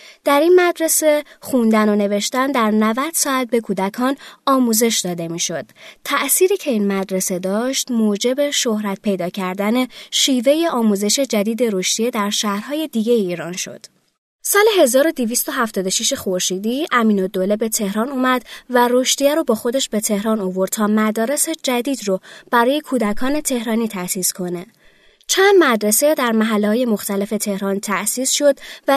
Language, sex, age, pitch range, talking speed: Persian, female, 20-39, 205-280 Hz, 140 wpm